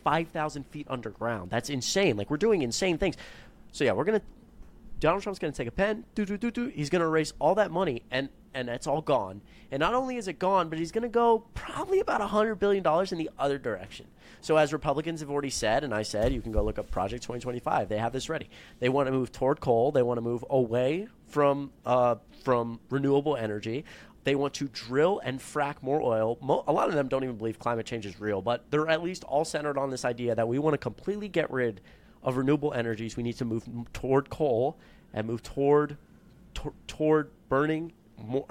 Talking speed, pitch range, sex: 225 wpm, 120-185 Hz, male